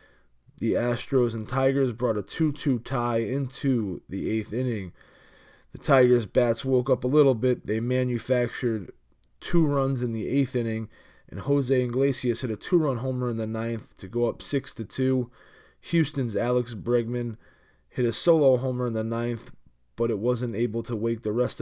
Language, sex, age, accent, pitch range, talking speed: English, male, 20-39, American, 110-130 Hz, 165 wpm